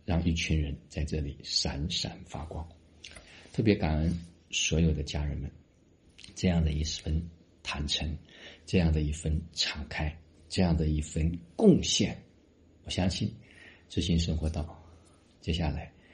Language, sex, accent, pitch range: Chinese, male, native, 75-85 Hz